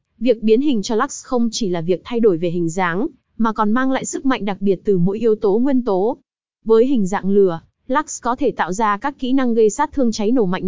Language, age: Vietnamese, 20-39